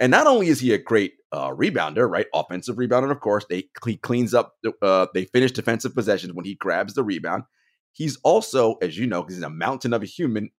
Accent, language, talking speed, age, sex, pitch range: American, English, 225 wpm, 30-49, male, 100-135 Hz